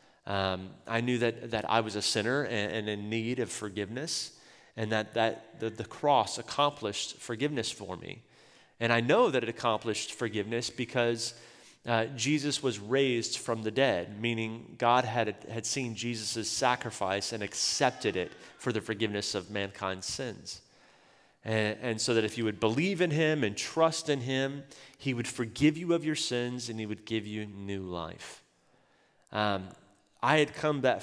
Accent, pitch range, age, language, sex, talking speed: American, 105-125 Hz, 30-49, Danish, male, 170 wpm